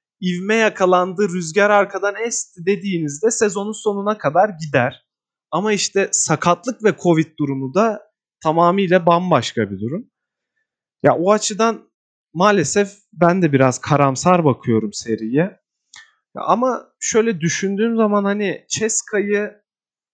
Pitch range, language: 140-200 Hz, Turkish